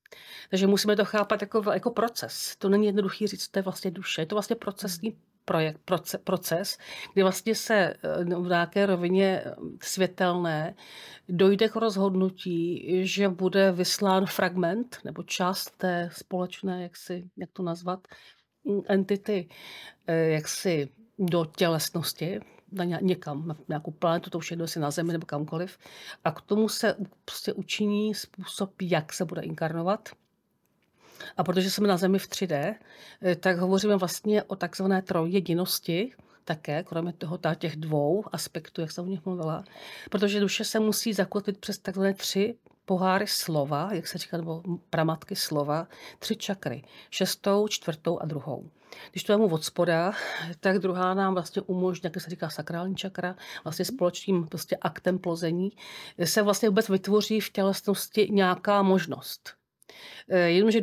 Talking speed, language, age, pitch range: 145 wpm, Czech, 50-69, 175-200 Hz